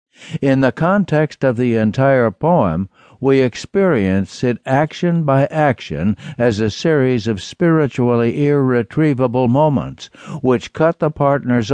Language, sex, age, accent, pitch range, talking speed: English, male, 60-79, American, 110-140 Hz, 125 wpm